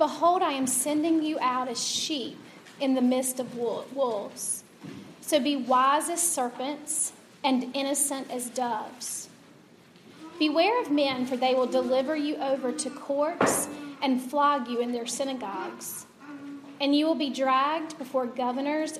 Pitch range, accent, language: 255-300 Hz, American, English